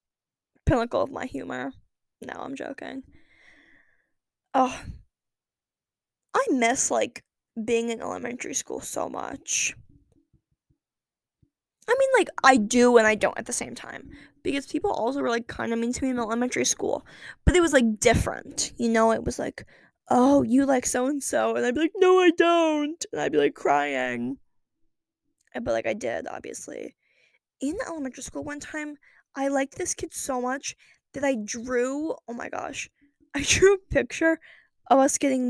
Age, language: 10-29, English